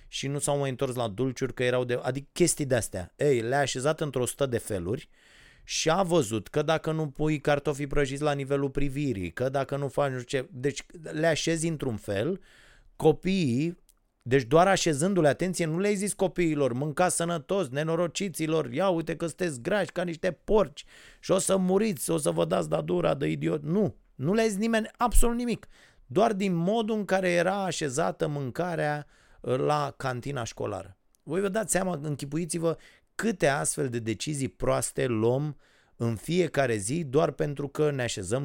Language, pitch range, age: Romanian, 110-165 Hz, 30-49